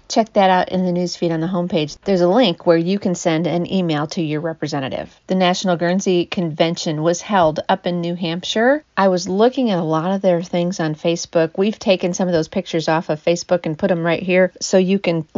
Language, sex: English, female